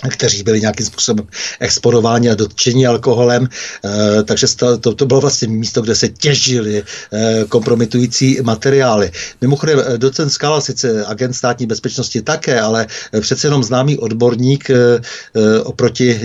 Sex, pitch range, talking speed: male, 115-140 Hz, 120 wpm